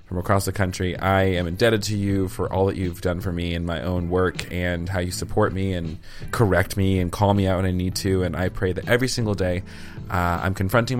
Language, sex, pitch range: English, male, 90-110 Hz